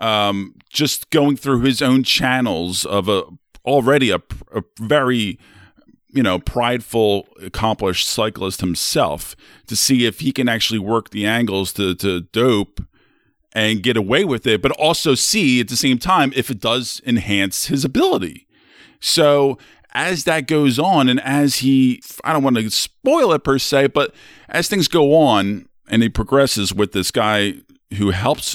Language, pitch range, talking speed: English, 100-135 Hz, 165 wpm